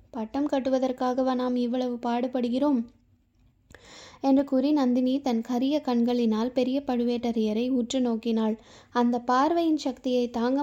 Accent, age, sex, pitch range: native, 20-39, female, 235-280 Hz